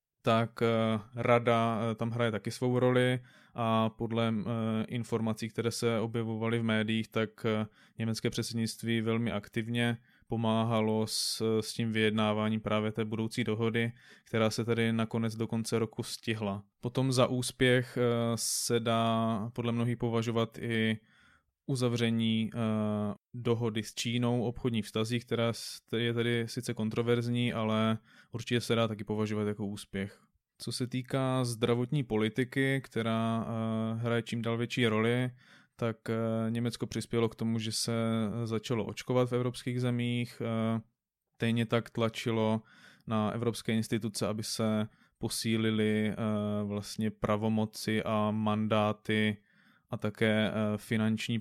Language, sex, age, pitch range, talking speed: Czech, male, 20-39, 110-120 Hz, 120 wpm